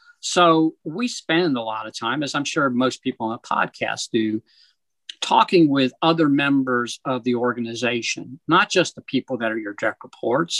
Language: English